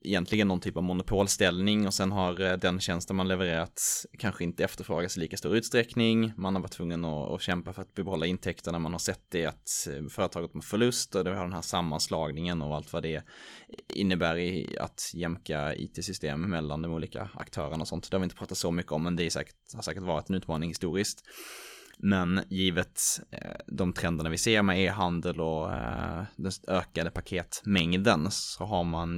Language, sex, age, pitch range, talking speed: Swedish, male, 20-39, 85-100 Hz, 190 wpm